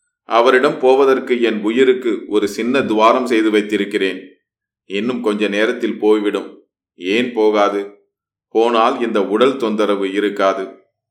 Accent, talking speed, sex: native, 110 wpm, male